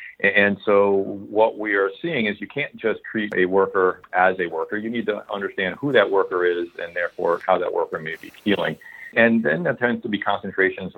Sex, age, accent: male, 40-59, American